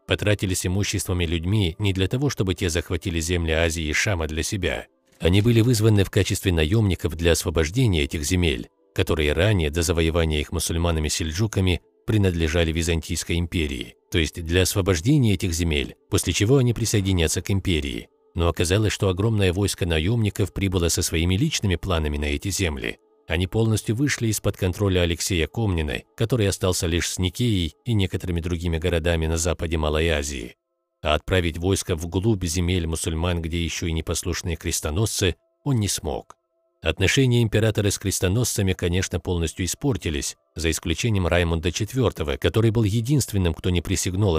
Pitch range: 85-105 Hz